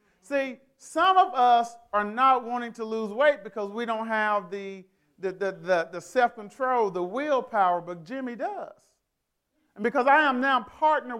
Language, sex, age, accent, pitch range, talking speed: English, male, 40-59, American, 195-255 Hz, 165 wpm